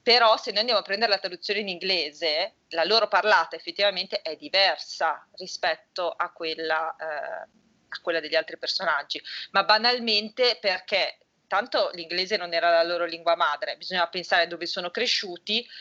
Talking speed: 155 wpm